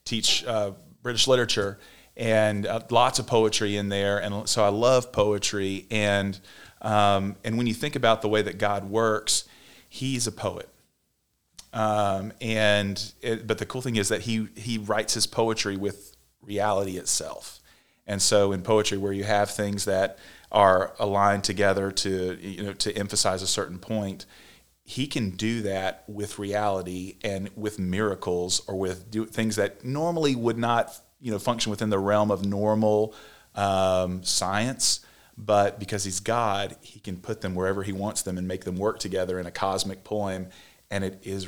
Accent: American